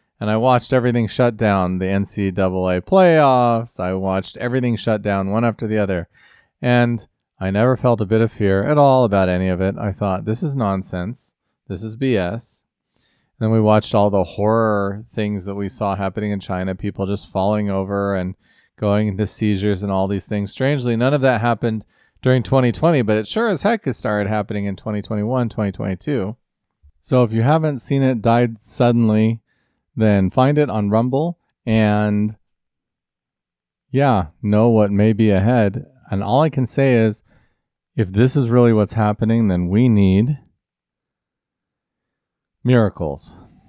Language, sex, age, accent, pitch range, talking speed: English, male, 40-59, American, 100-125 Hz, 165 wpm